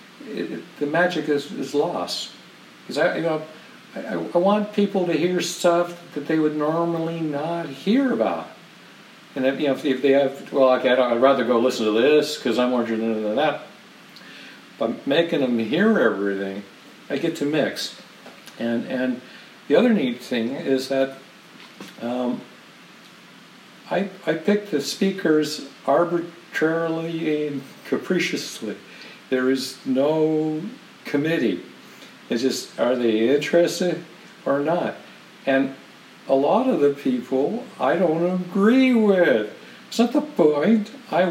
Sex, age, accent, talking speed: male, 60-79, American, 140 wpm